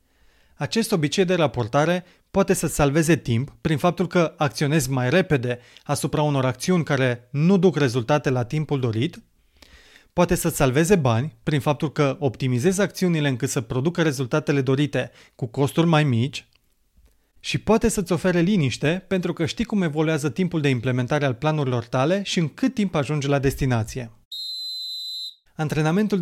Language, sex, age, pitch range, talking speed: Romanian, male, 30-49, 130-175 Hz, 150 wpm